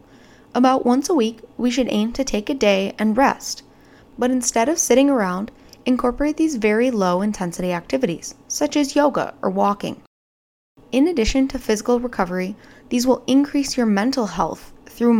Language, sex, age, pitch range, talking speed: English, female, 20-39, 210-260 Hz, 160 wpm